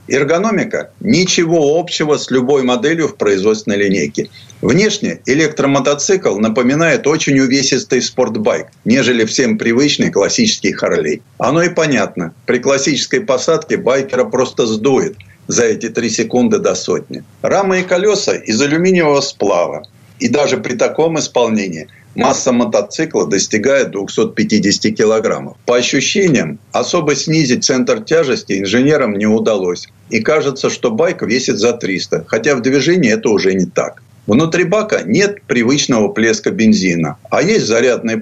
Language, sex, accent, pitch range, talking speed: Russian, male, native, 115-180 Hz, 130 wpm